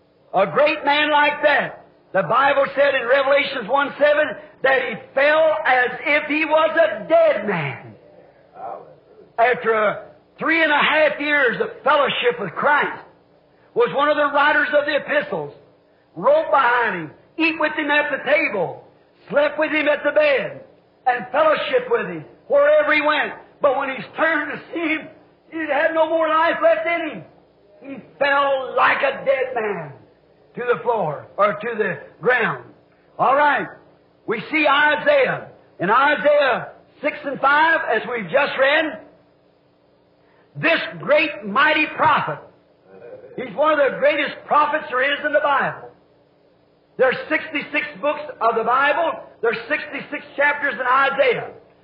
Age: 50-69